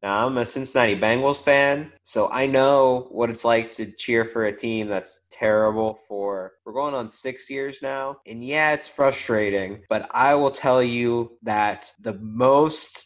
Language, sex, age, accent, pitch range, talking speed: English, male, 20-39, American, 105-130 Hz, 175 wpm